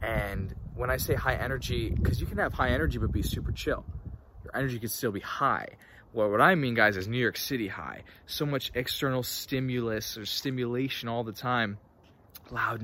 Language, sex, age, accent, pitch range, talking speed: English, male, 20-39, American, 95-130 Hz, 195 wpm